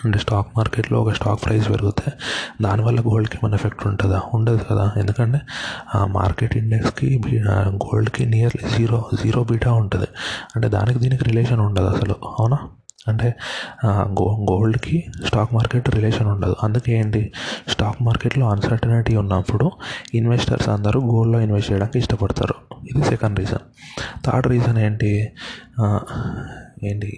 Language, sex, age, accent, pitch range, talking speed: Telugu, male, 20-39, native, 105-115 Hz, 120 wpm